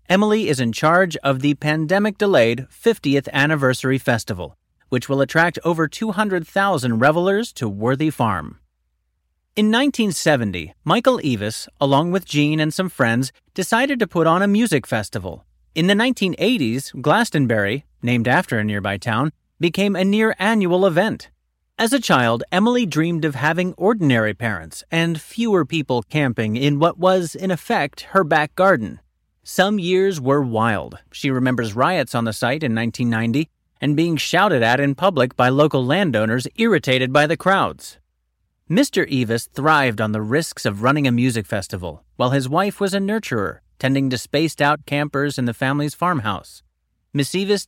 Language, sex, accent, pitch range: English, male, American, 115-185 Hz